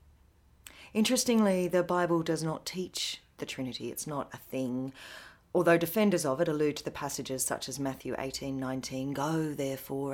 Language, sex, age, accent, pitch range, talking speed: English, female, 30-49, Australian, 130-175 Hz, 160 wpm